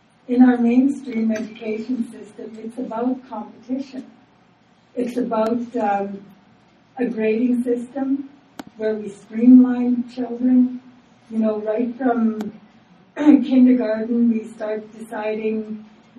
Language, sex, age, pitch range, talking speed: English, female, 60-79, 215-245 Hz, 100 wpm